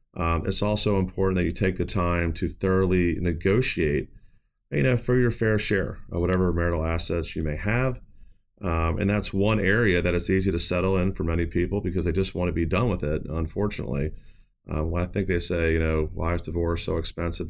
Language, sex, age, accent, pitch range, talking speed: English, male, 30-49, American, 85-100 Hz, 210 wpm